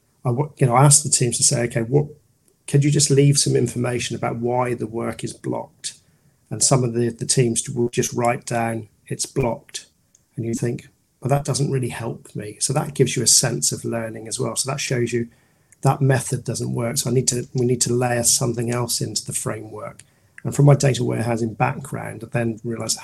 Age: 40-59